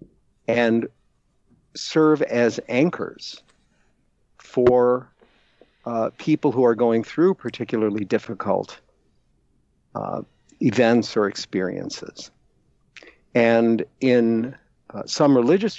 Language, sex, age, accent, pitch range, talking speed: English, male, 50-69, American, 115-130 Hz, 85 wpm